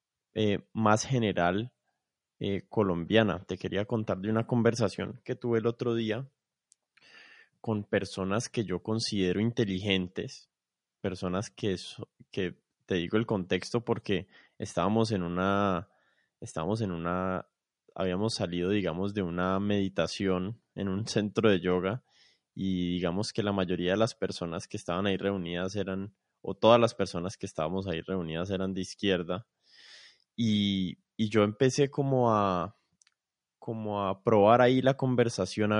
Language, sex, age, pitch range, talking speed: Spanish, male, 20-39, 95-115 Hz, 135 wpm